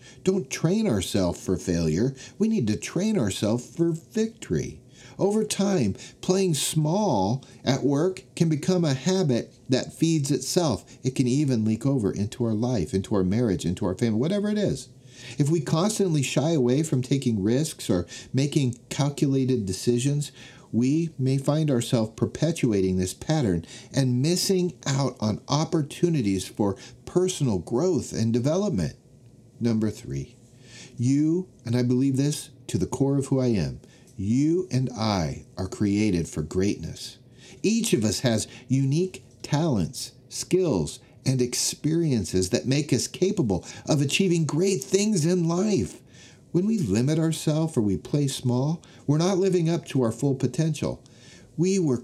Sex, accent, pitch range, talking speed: male, American, 120-160 Hz, 150 wpm